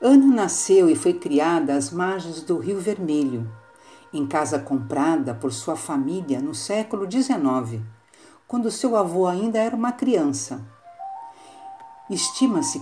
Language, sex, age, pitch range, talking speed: Portuguese, female, 60-79, 155-230 Hz, 125 wpm